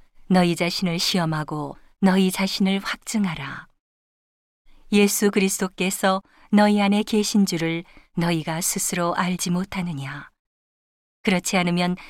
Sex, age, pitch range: female, 40-59, 170-205 Hz